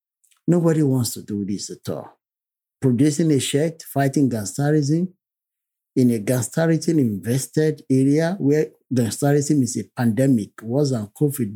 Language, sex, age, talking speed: English, male, 50-69, 125 wpm